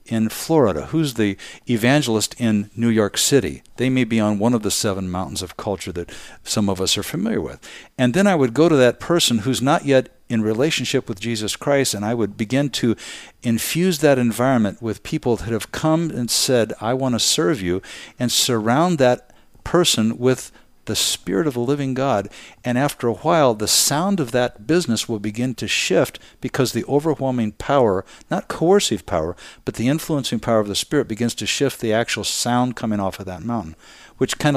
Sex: male